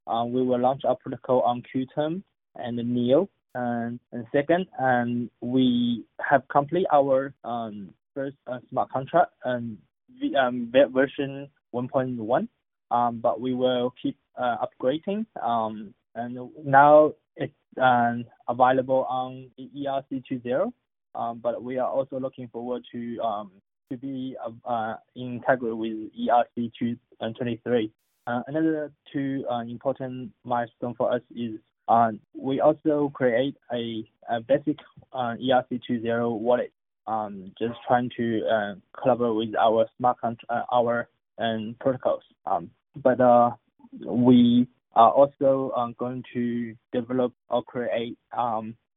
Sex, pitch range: male, 120-135 Hz